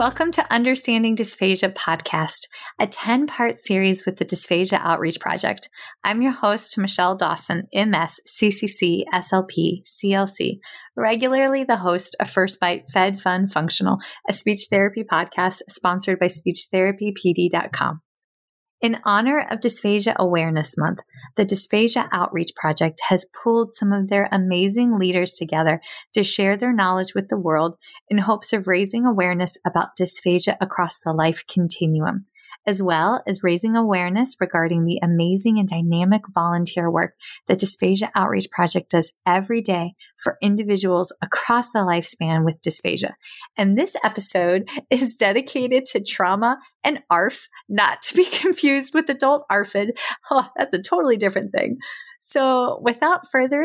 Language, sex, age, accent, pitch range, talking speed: English, female, 30-49, American, 180-235 Hz, 140 wpm